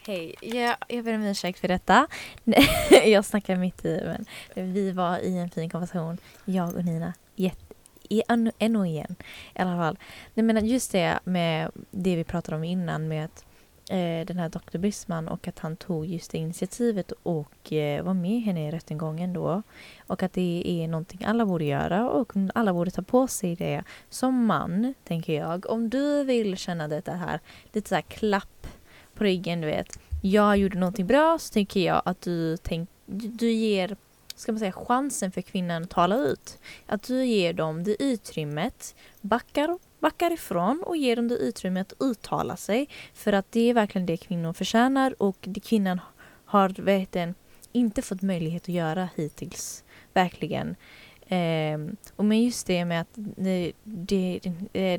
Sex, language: female, Swedish